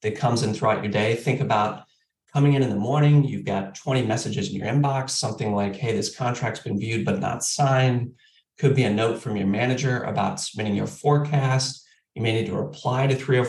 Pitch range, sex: 110-140 Hz, male